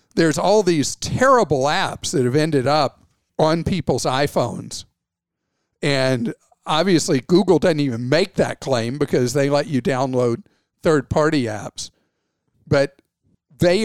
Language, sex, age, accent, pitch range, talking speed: English, male, 50-69, American, 130-165 Hz, 125 wpm